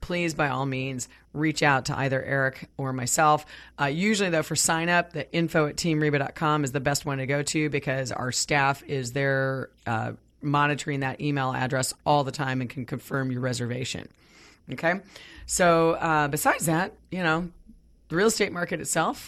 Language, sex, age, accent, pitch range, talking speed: English, female, 30-49, American, 140-170 Hz, 180 wpm